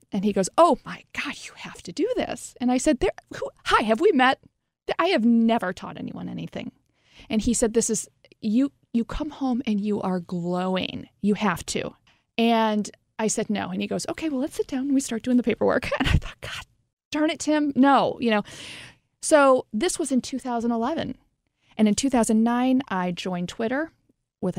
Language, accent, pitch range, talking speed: English, American, 195-255 Hz, 200 wpm